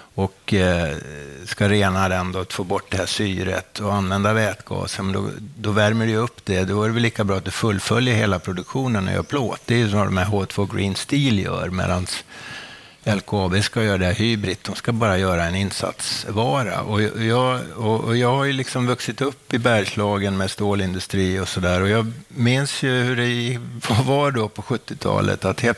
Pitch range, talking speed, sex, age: 95-120 Hz, 190 wpm, male, 50-69